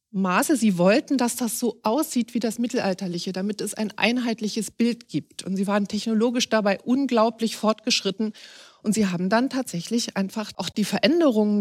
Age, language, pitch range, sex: 40-59, German, 195-235 Hz, female